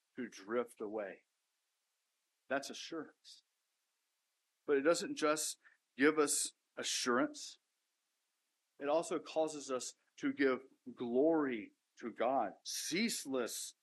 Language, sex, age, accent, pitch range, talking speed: English, male, 50-69, American, 125-165 Hz, 95 wpm